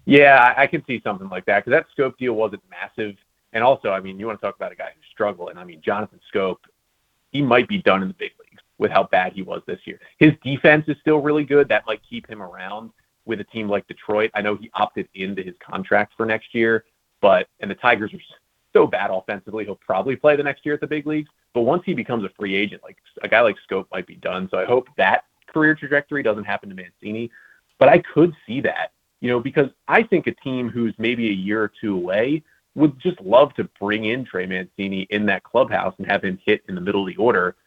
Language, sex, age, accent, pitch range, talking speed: English, male, 30-49, American, 100-145 Hz, 245 wpm